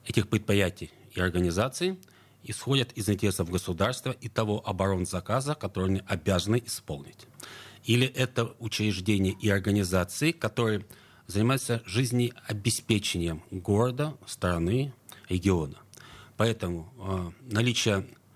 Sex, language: male, Russian